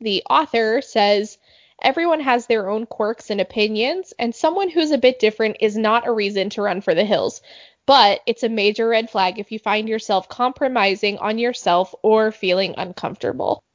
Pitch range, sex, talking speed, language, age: 200-230 Hz, female, 180 wpm, English, 10-29